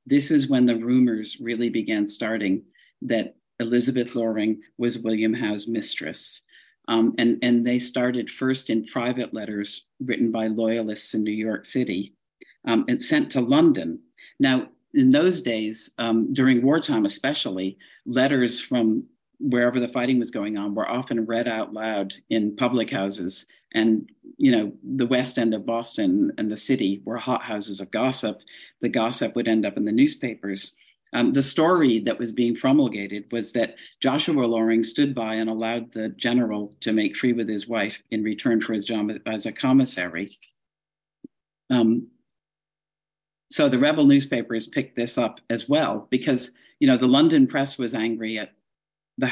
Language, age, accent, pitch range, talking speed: English, 50-69, American, 110-130 Hz, 165 wpm